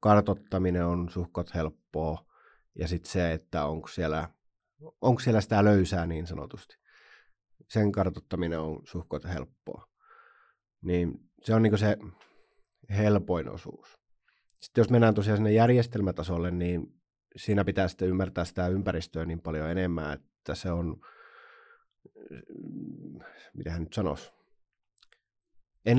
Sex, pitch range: male, 85-105 Hz